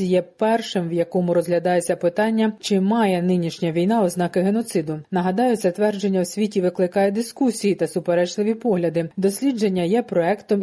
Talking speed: 140 wpm